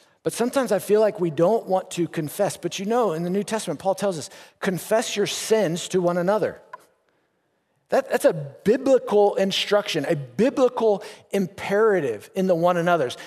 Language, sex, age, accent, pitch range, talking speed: English, male, 50-69, American, 160-225 Hz, 165 wpm